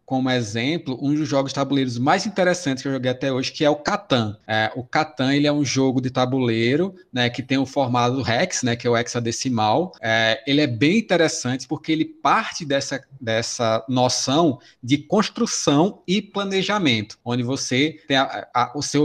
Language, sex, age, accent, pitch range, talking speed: Portuguese, male, 20-39, Brazilian, 125-160 Hz, 190 wpm